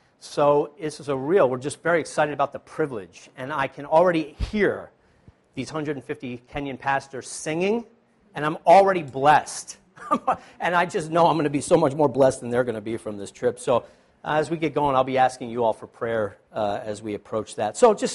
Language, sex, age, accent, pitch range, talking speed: English, male, 40-59, American, 130-165 Hz, 215 wpm